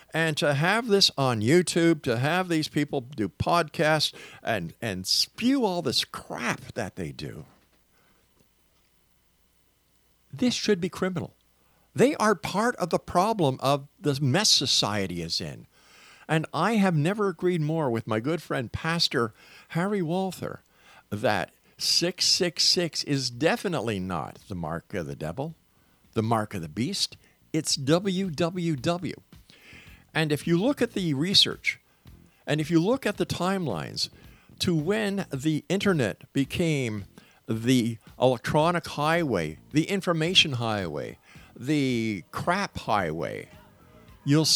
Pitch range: 125-175 Hz